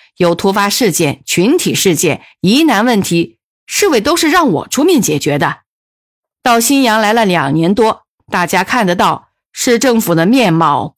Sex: female